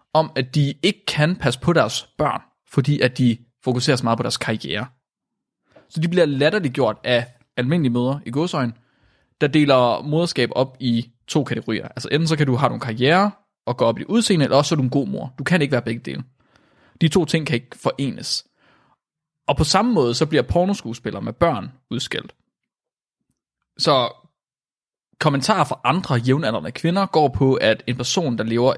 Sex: male